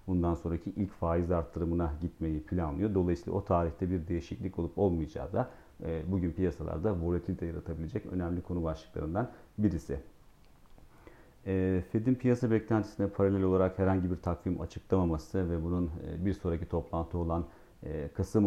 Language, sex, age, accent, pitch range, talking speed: Turkish, male, 40-59, native, 85-95 Hz, 125 wpm